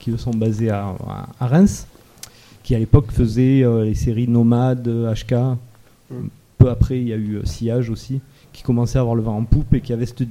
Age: 30-49